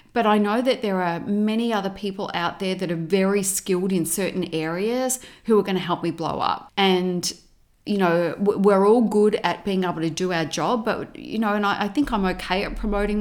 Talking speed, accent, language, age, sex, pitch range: 225 wpm, Australian, English, 30-49, female, 170-205 Hz